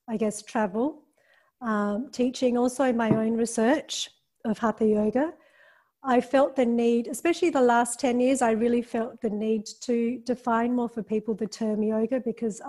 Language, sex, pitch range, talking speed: English, female, 215-245 Hz, 165 wpm